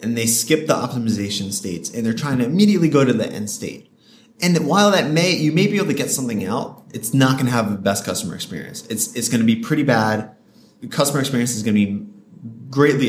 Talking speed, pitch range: 225 wpm, 110-150 Hz